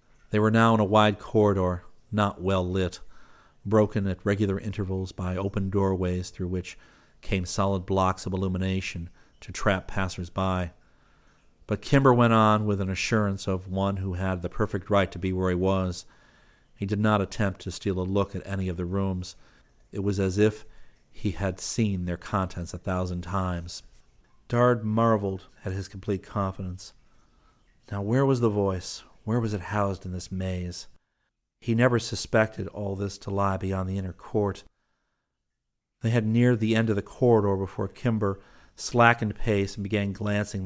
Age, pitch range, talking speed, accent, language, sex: 50-69, 95-105 Hz, 170 wpm, American, English, male